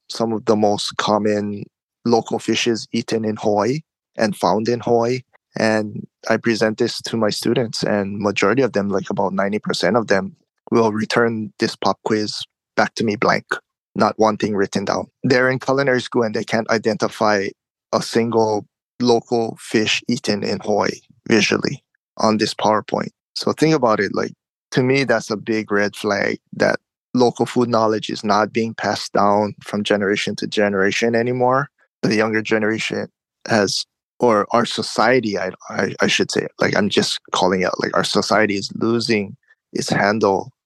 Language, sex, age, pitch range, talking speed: English, male, 20-39, 105-115 Hz, 165 wpm